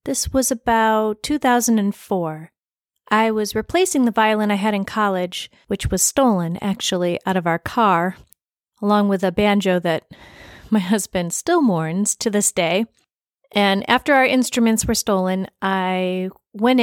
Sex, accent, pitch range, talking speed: female, American, 195-230 Hz, 145 wpm